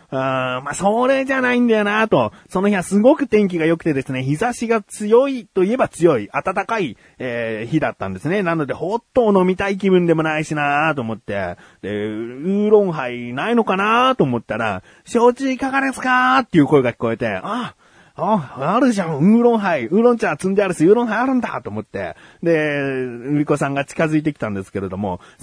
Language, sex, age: Japanese, male, 30-49